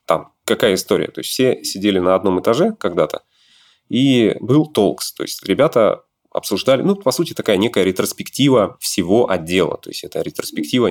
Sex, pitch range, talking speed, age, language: male, 85-125 Hz, 160 wpm, 20-39, Russian